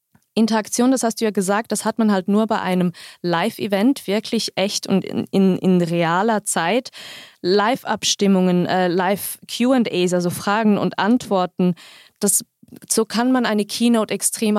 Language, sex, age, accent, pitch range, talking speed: German, female, 20-39, German, 185-220 Hz, 150 wpm